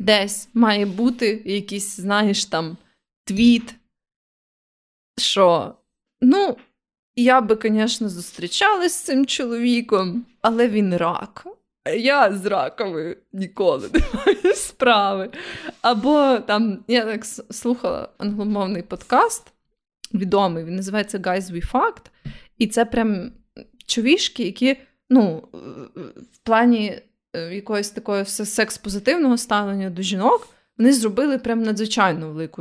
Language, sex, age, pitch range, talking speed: Ukrainian, female, 20-39, 200-250 Hz, 105 wpm